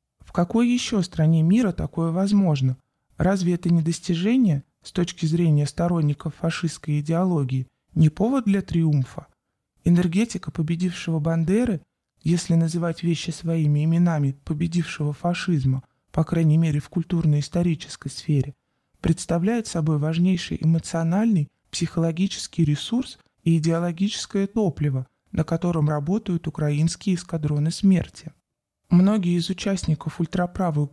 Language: Russian